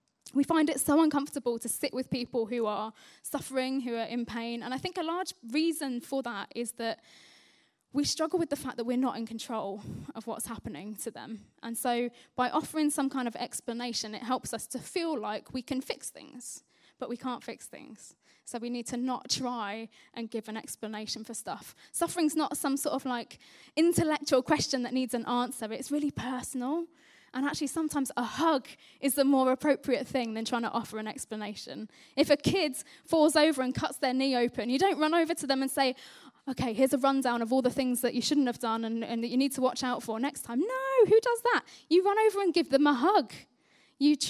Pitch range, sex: 235-295 Hz, female